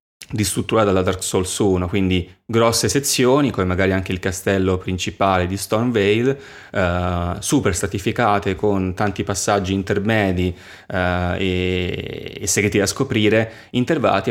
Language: Italian